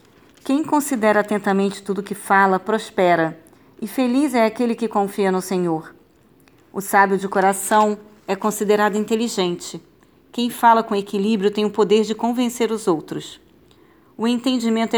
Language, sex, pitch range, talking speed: Portuguese, female, 185-215 Hz, 145 wpm